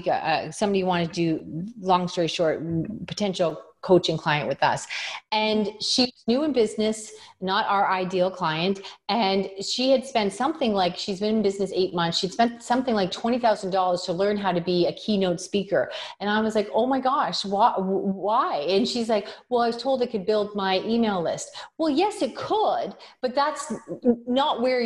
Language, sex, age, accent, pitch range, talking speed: English, female, 30-49, American, 185-245 Hz, 185 wpm